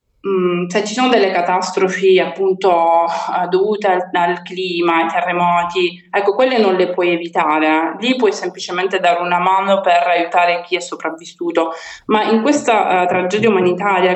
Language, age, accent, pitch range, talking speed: Italian, 20-39, native, 175-205 Hz, 155 wpm